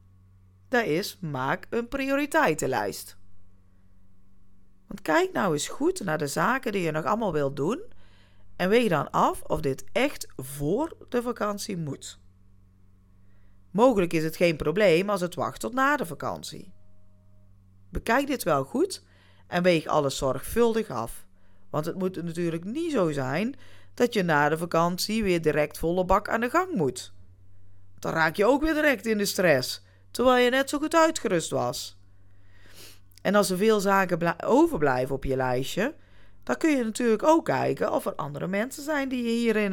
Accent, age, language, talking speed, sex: Dutch, 40-59, Dutch, 165 wpm, female